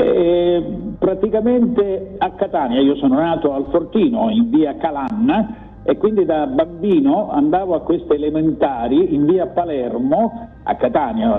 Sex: male